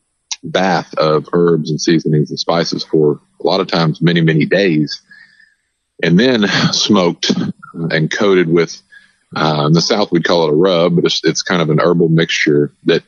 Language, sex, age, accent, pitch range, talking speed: English, male, 40-59, American, 75-90 Hz, 180 wpm